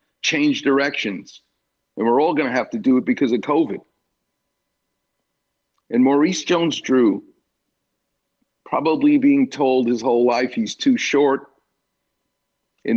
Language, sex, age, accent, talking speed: English, male, 50-69, American, 130 wpm